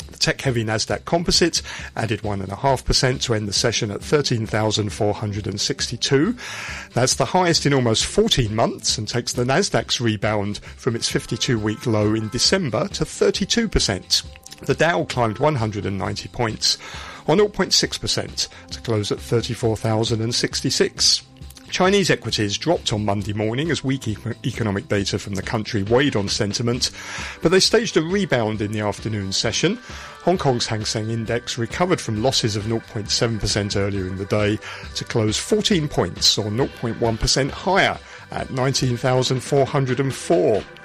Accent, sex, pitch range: British, male, 105-135 Hz